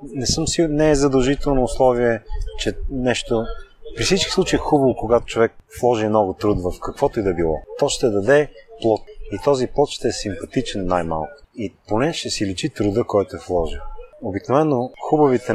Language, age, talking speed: Bulgarian, 30-49, 180 wpm